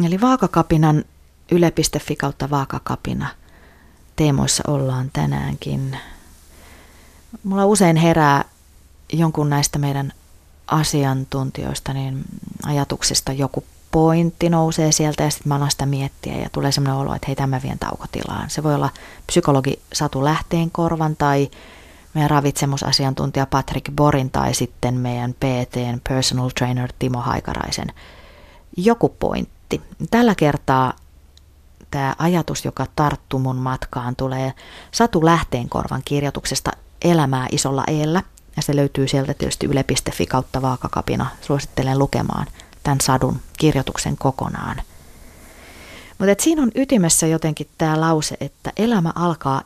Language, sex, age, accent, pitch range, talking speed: Finnish, female, 30-49, native, 125-155 Hz, 115 wpm